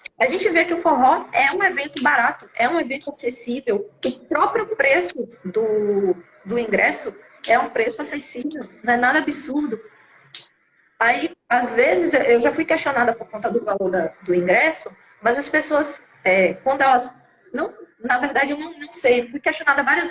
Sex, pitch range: female, 245-330 Hz